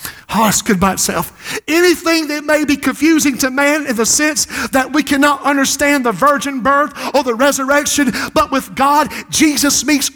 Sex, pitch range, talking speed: male, 275-310 Hz, 175 wpm